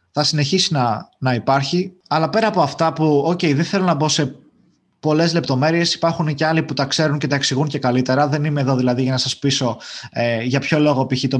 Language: Greek